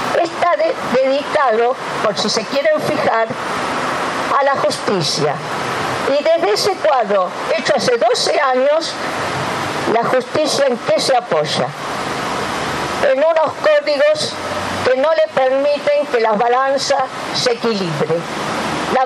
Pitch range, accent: 215-275 Hz, American